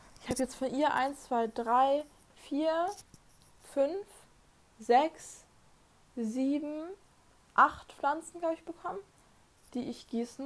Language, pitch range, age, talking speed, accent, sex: German, 215-270 Hz, 20-39, 115 wpm, German, female